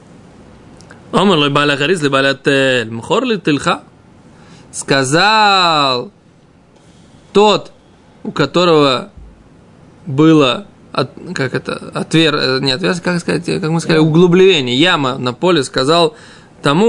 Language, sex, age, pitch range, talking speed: Russian, male, 20-39, 145-205 Hz, 85 wpm